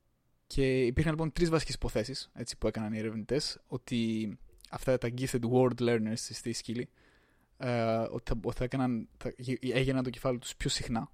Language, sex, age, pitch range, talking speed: Greek, male, 20-39, 110-130 Hz, 135 wpm